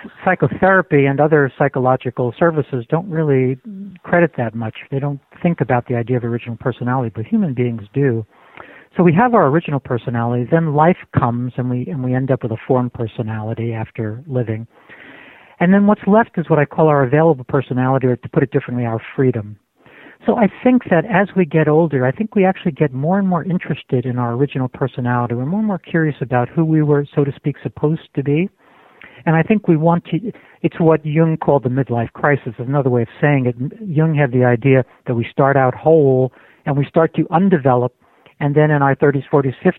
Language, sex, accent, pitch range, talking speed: English, male, American, 125-165 Hz, 205 wpm